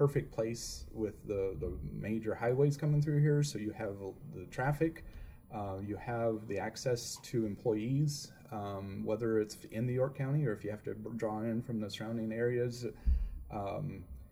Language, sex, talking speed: English, male, 170 wpm